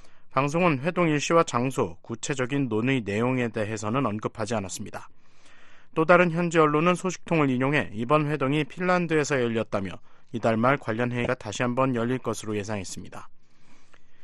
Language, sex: Korean, male